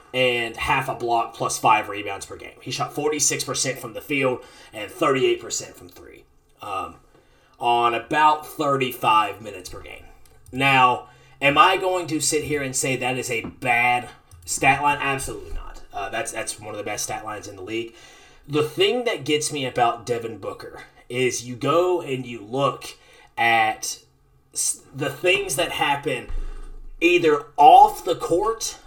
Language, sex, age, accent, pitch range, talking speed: English, male, 30-49, American, 120-155 Hz, 160 wpm